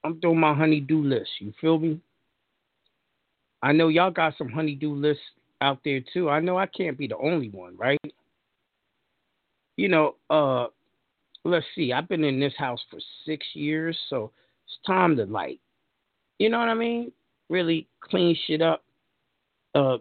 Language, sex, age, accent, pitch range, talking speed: English, male, 40-59, American, 130-165 Hz, 165 wpm